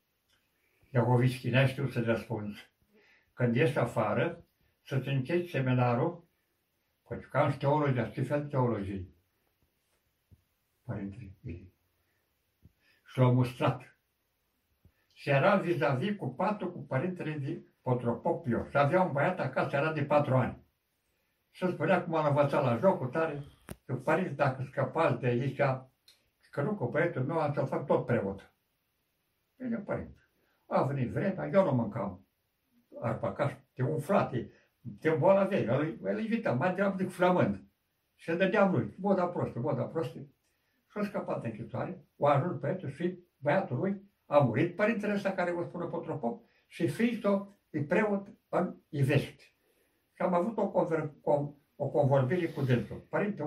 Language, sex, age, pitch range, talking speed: Romanian, male, 60-79, 125-180 Hz, 140 wpm